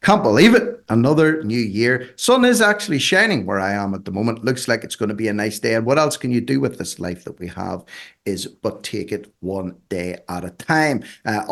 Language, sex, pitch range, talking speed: English, male, 100-135 Hz, 240 wpm